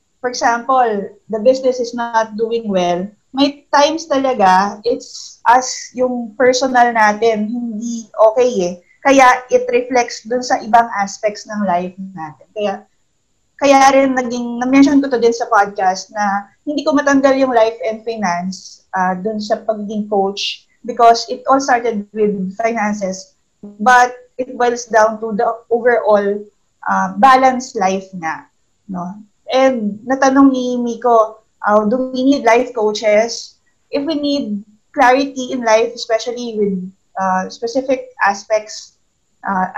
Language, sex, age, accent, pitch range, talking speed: English, female, 20-39, Filipino, 200-250 Hz, 140 wpm